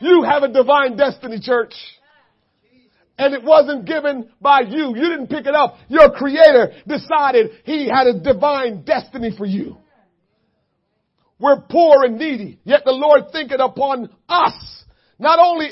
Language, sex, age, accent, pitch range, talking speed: English, male, 50-69, American, 235-290 Hz, 150 wpm